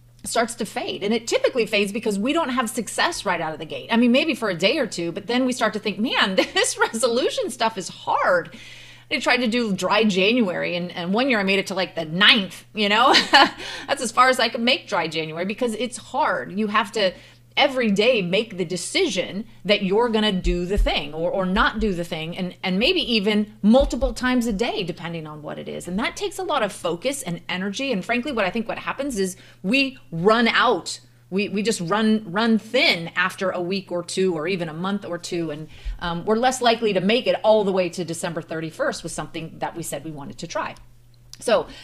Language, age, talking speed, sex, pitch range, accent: English, 30-49, 230 wpm, female, 180-245 Hz, American